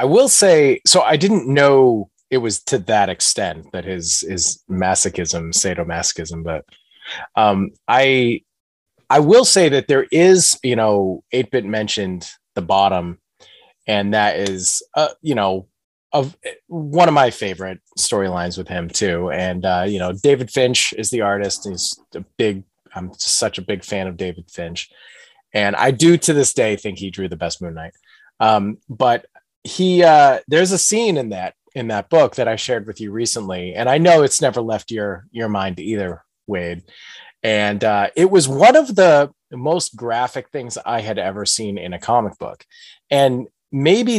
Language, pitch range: English, 95-140 Hz